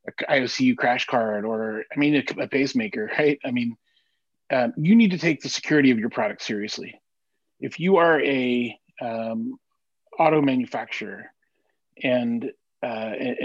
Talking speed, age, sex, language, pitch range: 145 wpm, 30-49, male, English, 125-195 Hz